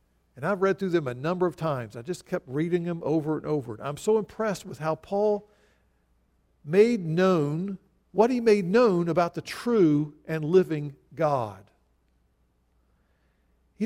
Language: English